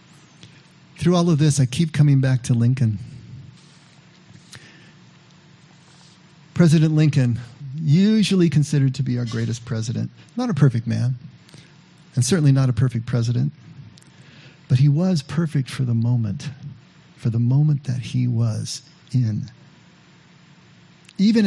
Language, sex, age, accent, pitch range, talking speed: English, male, 50-69, American, 120-155 Hz, 125 wpm